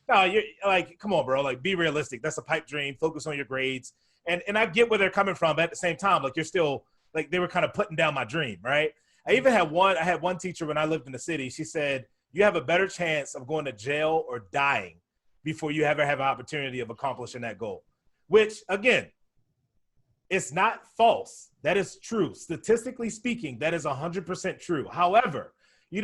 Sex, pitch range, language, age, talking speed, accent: male, 140-180 Hz, English, 30-49, 225 wpm, American